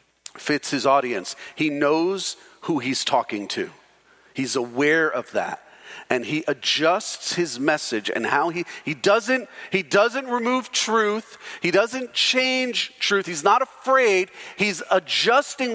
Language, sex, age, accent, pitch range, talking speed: English, male, 40-59, American, 125-175 Hz, 135 wpm